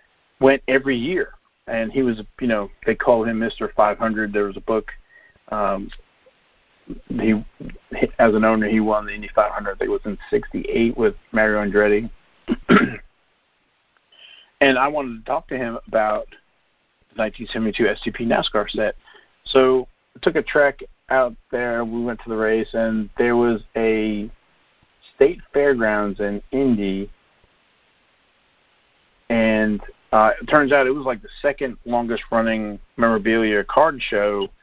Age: 40-59